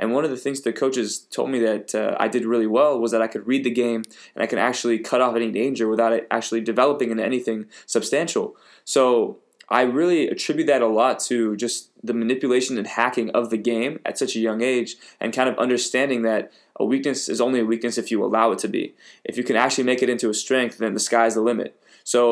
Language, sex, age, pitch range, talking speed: English, male, 20-39, 115-130 Hz, 240 wpm